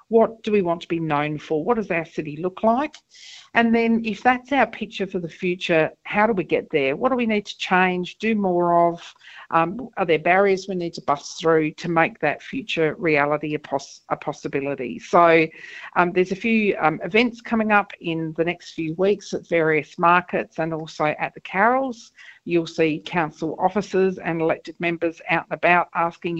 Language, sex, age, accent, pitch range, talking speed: English, female, 50-69, Australian, 160-210 Hz, 200 wpm